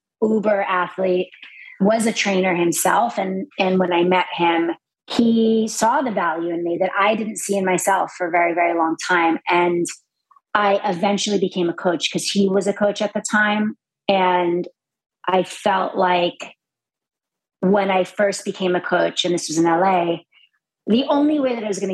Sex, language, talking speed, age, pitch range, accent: female, English, 180 wpm, 30-49, 180-210 Hz, American